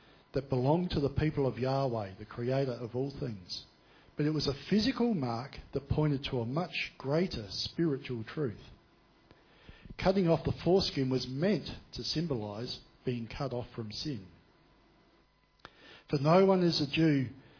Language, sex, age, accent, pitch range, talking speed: English, male, 50-69, Australian, 125-160 Hz, 155 wpm